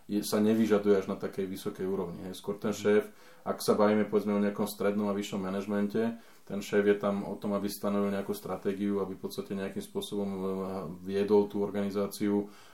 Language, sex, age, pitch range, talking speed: Slovak, male, 20-39, 100-105 Hz, 185 wpm